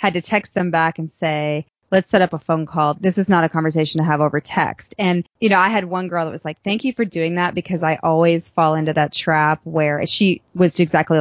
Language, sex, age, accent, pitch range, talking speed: English, female, 20-39, American, 160-200 Hz, 255 wpm